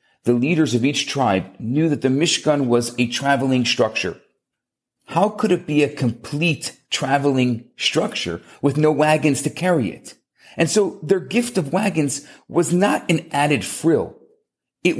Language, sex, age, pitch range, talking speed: English, male, 40-59, 140-185 Hz, 155 wpm